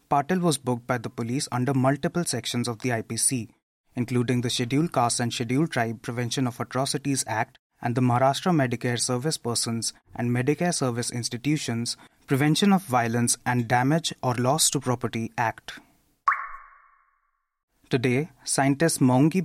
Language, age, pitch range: English, 30-49, 120-145 Hz